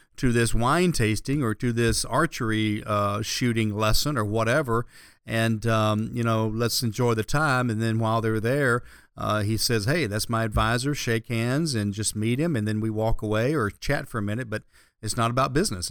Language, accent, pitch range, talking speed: English, American, 110-135 Hz, 205 wpm